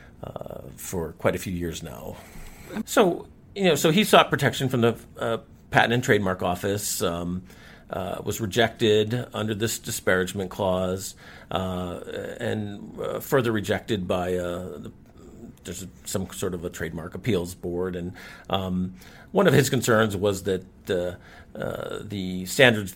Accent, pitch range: American, 90-105 Hz